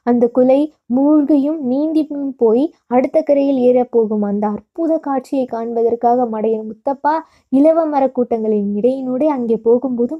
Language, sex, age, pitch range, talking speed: Tamil, female, 20-39, 230-285 Hz, 105 wpm